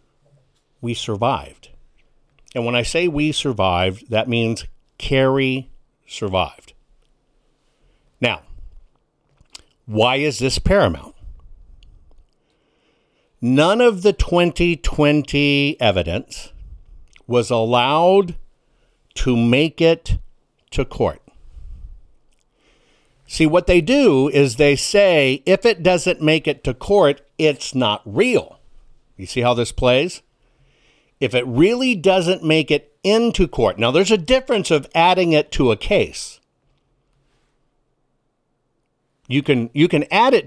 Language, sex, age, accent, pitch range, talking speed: English, male, 60-79, American, 120-175 Hz, 110 wpm